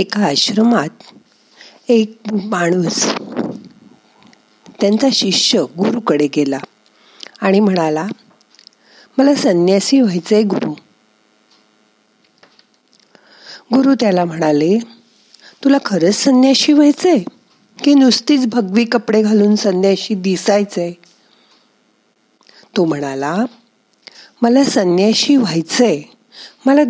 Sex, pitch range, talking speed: female, 165-240 Hz, 55 wpm